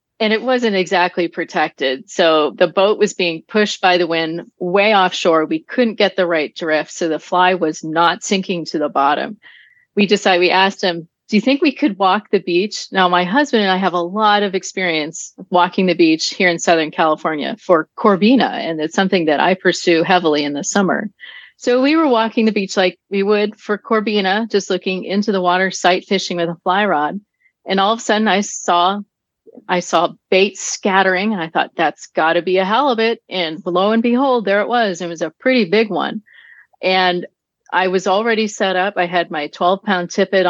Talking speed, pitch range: 205 wpm, 175-210 Hz